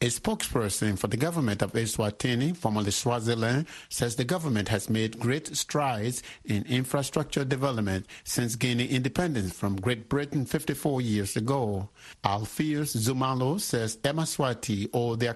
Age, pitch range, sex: 60-79, 110-140 Hz, male